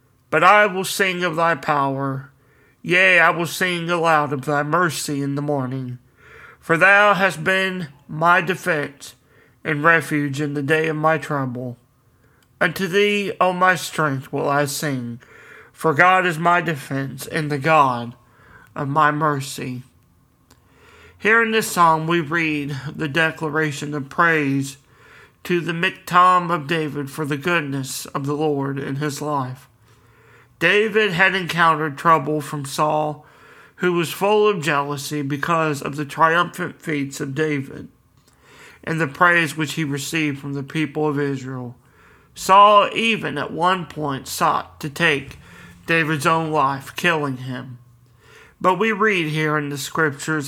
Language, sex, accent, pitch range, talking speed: English, male, American, 140-175 Hz, 145 wpm